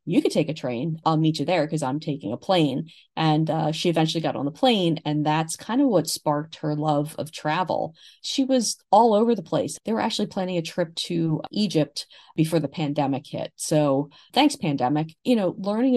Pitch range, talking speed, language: 150-180 Hz, 210 wpm, English